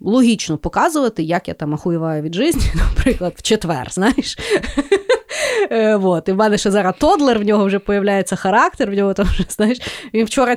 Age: 30-49